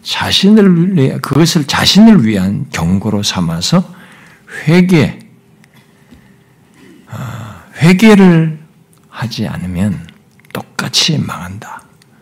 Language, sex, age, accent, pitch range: Korean, male, 60-79, native, 130-205 Hz